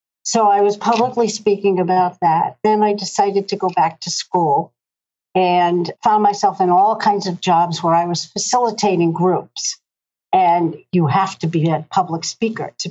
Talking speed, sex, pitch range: 170 wpm, female, 175-210 Hz